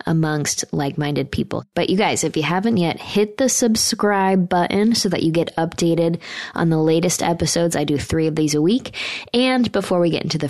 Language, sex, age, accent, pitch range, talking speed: English, female, 20-39, American, 150-185 Hz, 205 wpm